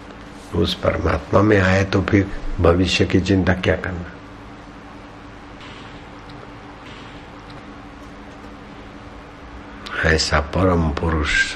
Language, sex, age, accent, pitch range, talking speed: Hindi, male, 60-79, native, 80-100 Hz, 75 wpm